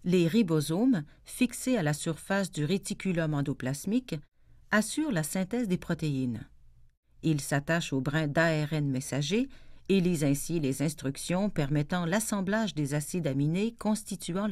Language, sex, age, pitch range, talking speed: French, female, 50-69, 140-195 Hz, 130 wpm